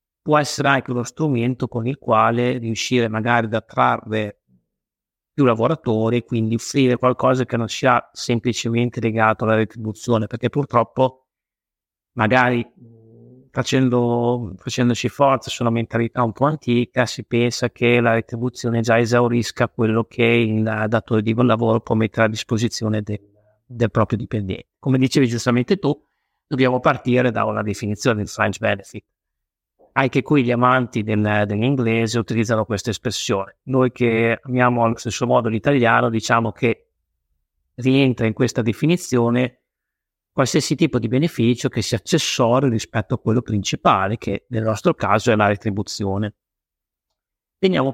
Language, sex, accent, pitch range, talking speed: Italian, male, native, 110-130 Hz, 135 wpm